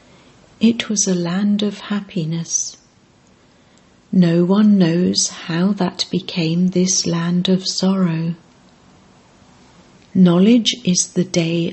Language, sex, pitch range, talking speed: English, female, 170-195 Hz, 100 wpm